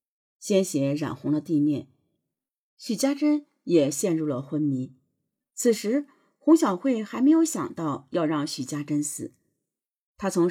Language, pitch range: Chinese, 150-240 Hz